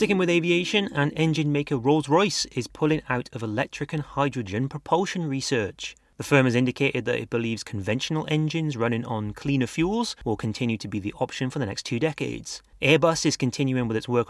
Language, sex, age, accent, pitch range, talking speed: English, male, 30-49, British, 115-160 Hz, 195 wpm